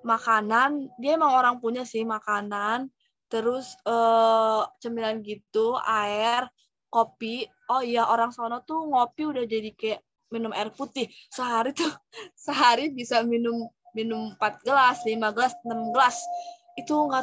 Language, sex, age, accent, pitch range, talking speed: Indonesian, female, 20-39, native, 220-255 Hz, 135 wpm